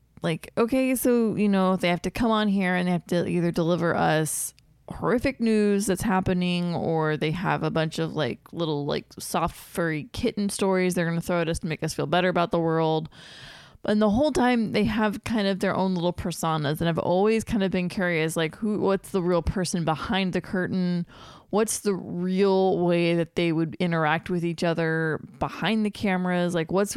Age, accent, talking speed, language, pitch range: 20-39, American, 205 wpm, English, 160-195 Hz